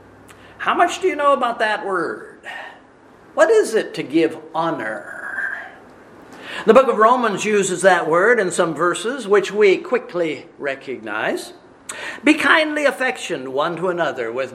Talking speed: 145 wpm